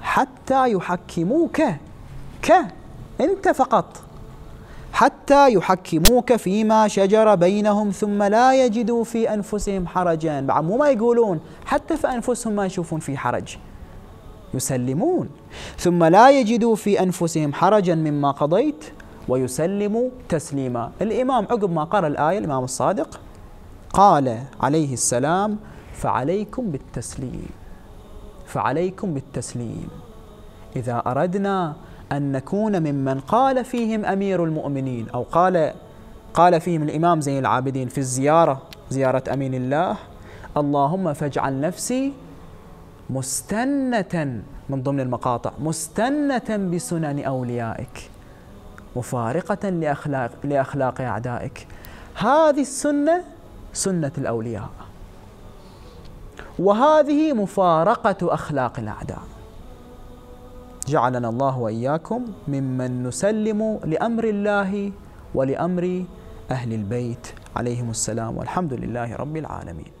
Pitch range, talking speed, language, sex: 130-210 Hz, 95 wpm, Arabic, male